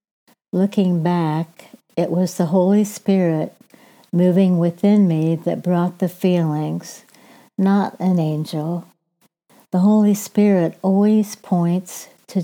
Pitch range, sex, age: 170-200 Hz, female, 60-79